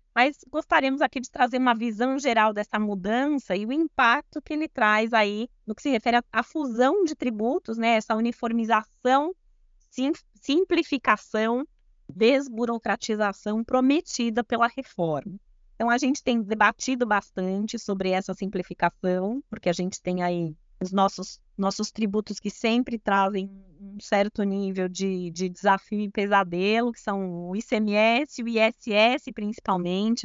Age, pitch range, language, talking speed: 20-39, 195-250 Hz, Portuguese, 135 wpm